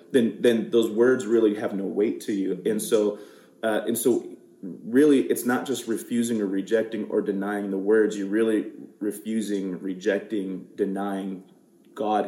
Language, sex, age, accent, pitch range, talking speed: English, male, 30-49, American, 105-130 Hz, 155 wpm